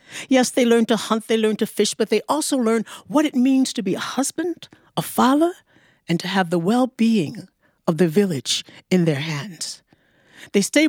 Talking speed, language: 195 wpm, English